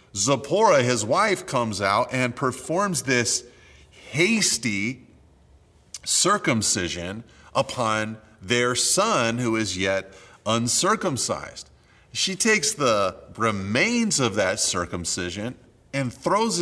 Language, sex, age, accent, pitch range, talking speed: English, male, 30-49, American, 95-135 Hz, 95 wpm